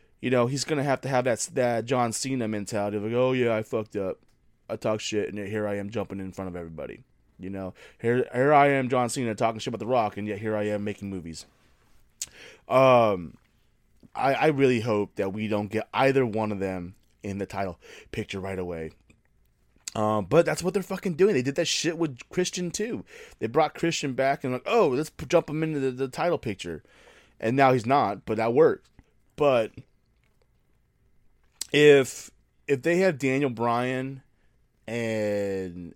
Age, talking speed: 20-39, 190 wpm